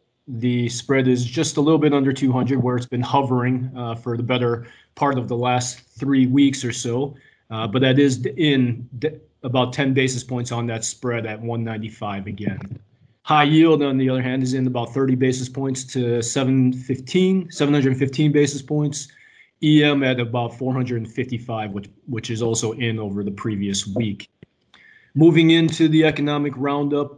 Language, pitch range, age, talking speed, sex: English, 120-140 Hz, 30-49, 165 wpm, male